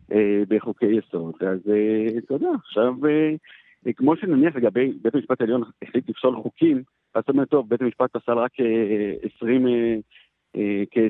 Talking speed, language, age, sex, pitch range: 140 wpm, Hebrew, 50-69, male, 105-130 Hz